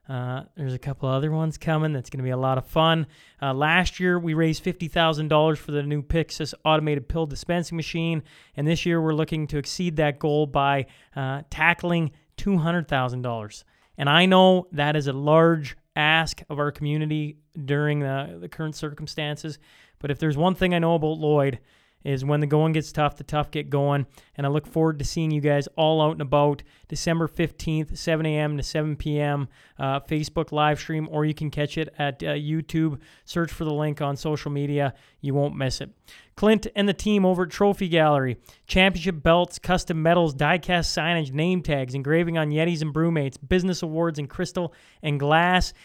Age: 30-49